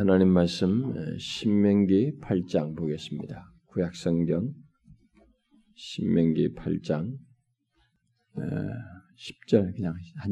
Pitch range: 80-120 Hz